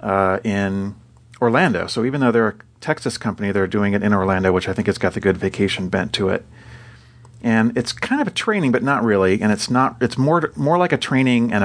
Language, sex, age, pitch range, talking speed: English, male, 40-59, 100-120 Hz, 230 wpm